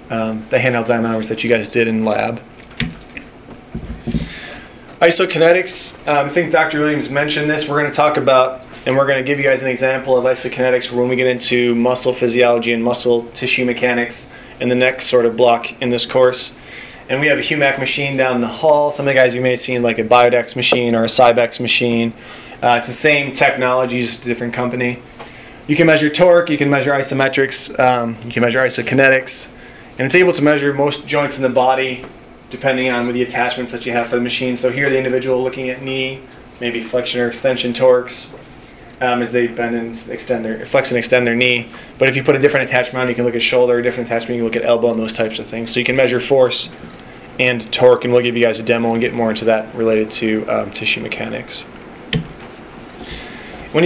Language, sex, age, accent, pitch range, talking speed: English, male, 20-39, American, 120-135 Hz, 220 wpm